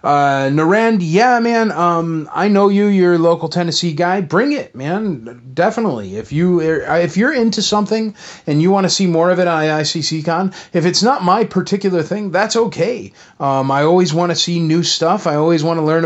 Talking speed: 200 wpm